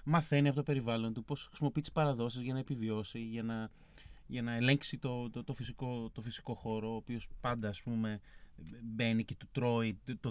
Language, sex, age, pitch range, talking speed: Greek, male, 30-49, 115-180 Hz, 180 wpm